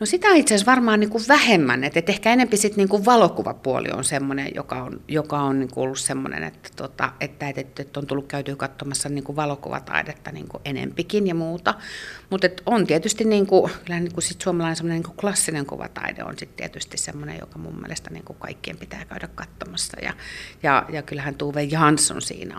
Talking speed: 185 wpm